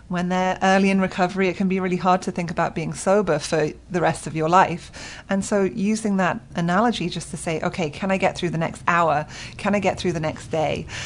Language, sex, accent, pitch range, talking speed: English, female, British, 165-190 Hz, 240 wpm